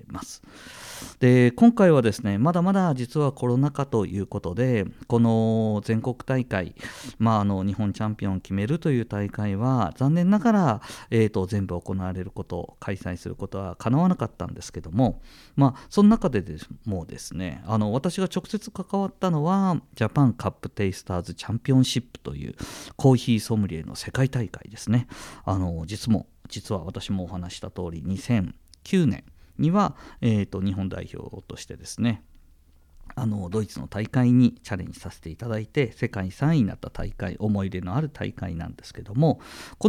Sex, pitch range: male, 95-125 Hz